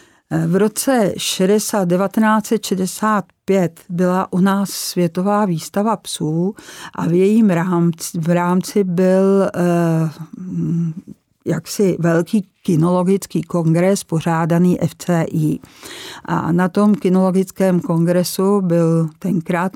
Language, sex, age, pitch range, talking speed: Czech, female, 50-69, 170-195 Hz, 85 wpm